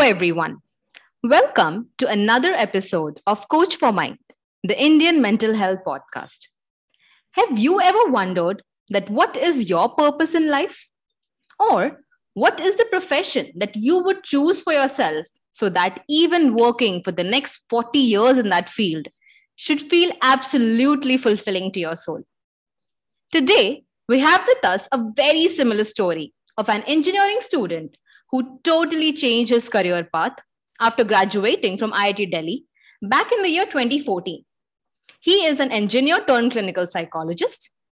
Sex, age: female, 20-39